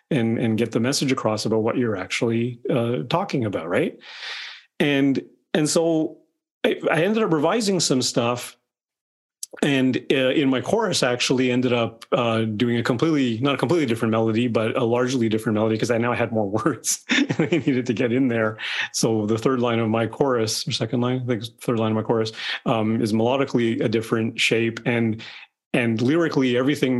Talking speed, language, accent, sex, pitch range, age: 195 wpm, English, American, male, 110-130 Hz, 30-49